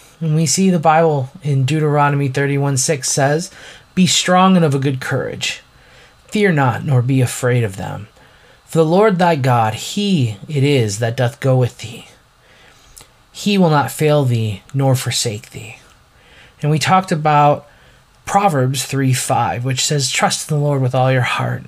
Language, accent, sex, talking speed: English, American, male, 165 wpm